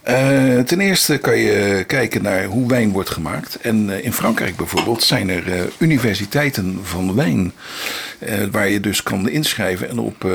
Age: 50-69